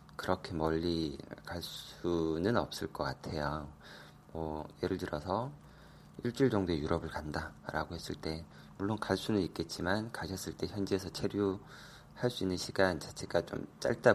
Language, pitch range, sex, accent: Korean, 75-100 Hz, male, native